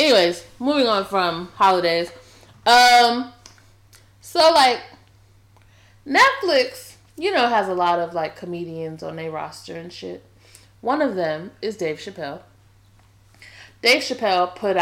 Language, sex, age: English, female, 20-39